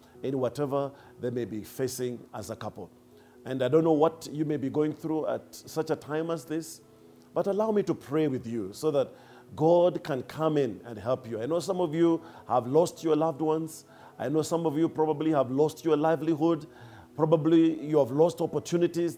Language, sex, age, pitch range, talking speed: English, male, 50-69, 120-160 Hz, 205 wpm